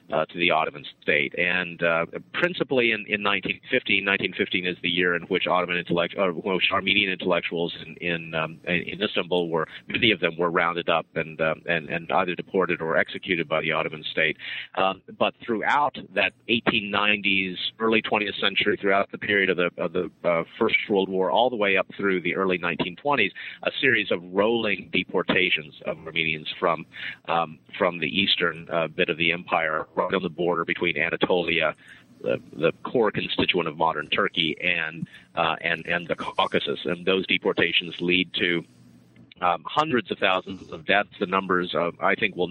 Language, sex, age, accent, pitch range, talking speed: English, male, 40-59, American, 85-95 Hz, 180 wpm